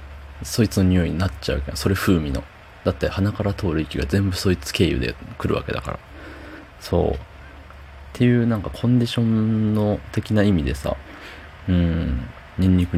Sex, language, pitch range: male, Japanese, 75-95 Hz